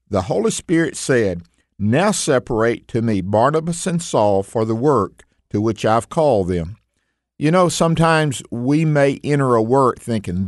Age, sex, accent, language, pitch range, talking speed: 50-69, male, American, English, 115-160 Hz, 160 wpm